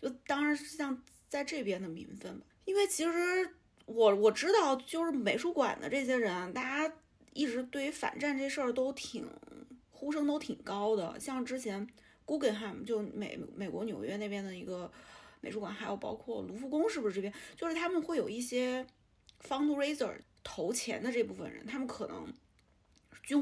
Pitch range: 215-290 Hz